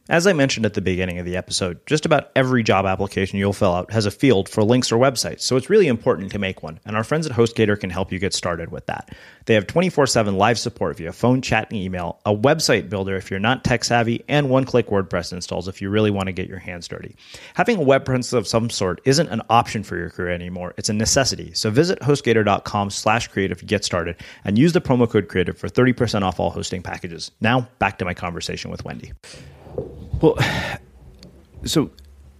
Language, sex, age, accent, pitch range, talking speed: English, male, 30-49, American, 85-115 Hz, 220 wpm